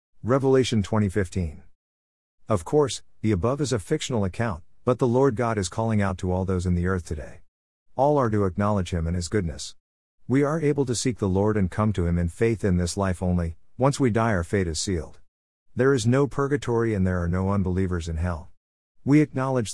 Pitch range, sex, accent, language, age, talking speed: 85-125 Hz, male, American, English, 50-69, 210 wpm